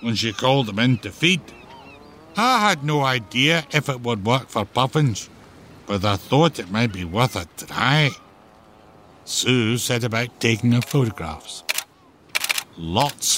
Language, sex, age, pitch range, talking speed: English, male, 60-79, 95-145 Hz, 150 wpm